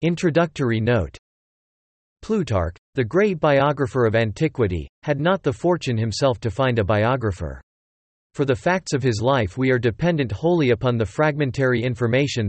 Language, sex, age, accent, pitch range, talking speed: English, male, 40-59, American, 115-150 Hz, 150 wpm